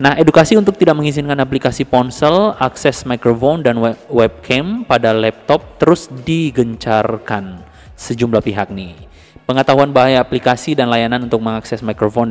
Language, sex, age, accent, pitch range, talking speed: Indonesian, male, 20-39, native, 110-145 Hz, 130 wpm